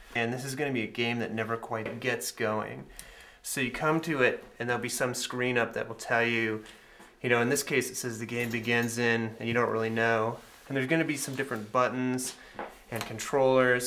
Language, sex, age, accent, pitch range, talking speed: English, male, 30-49, American, 115-130 Hz, 225 wpm